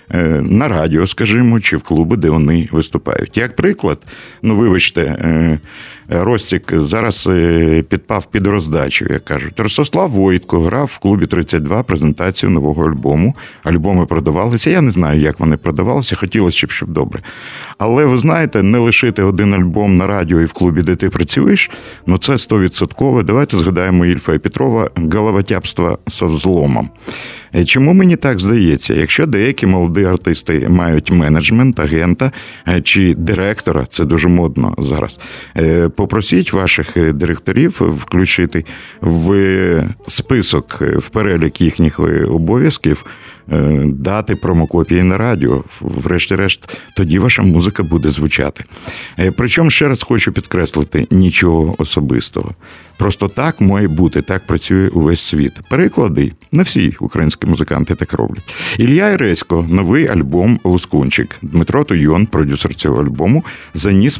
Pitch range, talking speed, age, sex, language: 80-105 Hz, 130 wpm, 50-69, male, Russian